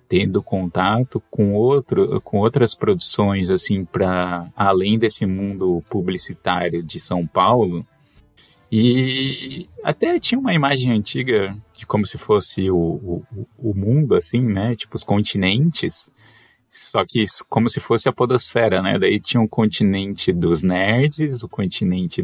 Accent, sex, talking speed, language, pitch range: Brazilian, male, 130 wpm, Portuguese, 95-130 Hz